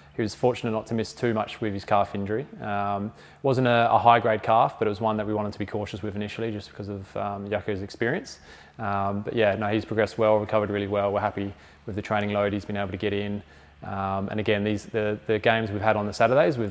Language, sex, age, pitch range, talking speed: English, male, 20-39, 100-110 Hz, 260 wpm